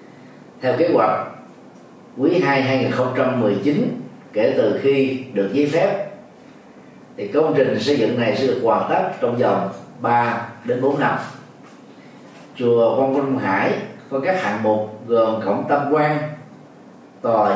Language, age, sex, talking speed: Vietnamese, 30-49, male, 140 wpm